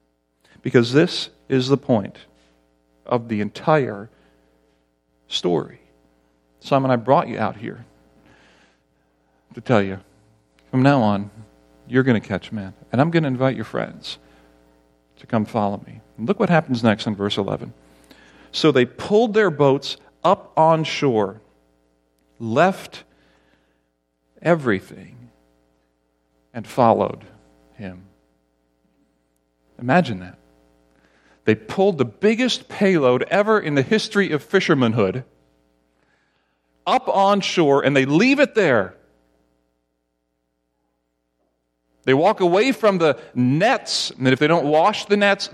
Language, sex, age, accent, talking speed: English, male, 50-69, American, 120 wpm